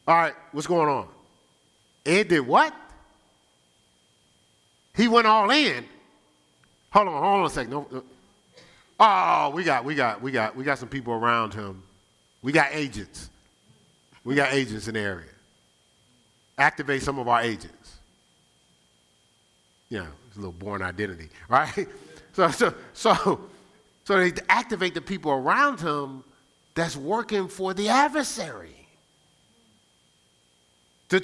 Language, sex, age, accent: English, male, 40-59, American